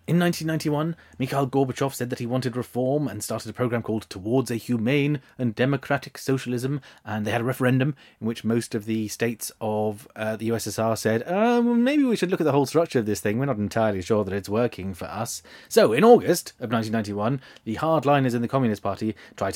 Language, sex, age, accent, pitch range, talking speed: English, male, 30-49, British, 115-165 Hz, 210 wpm